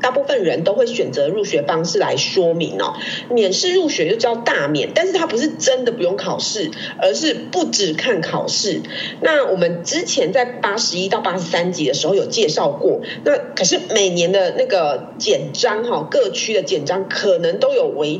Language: Chinese